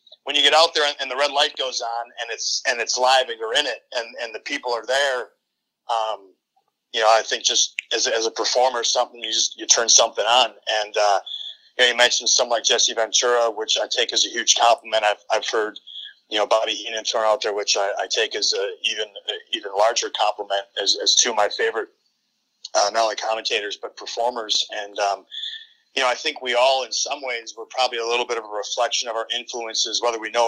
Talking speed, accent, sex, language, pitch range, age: 235 wpm, American, male, English, 115-160 Hz, 30-49